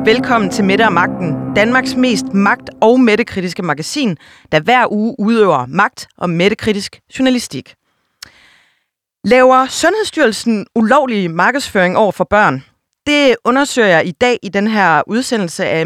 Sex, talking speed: female, 135 wpm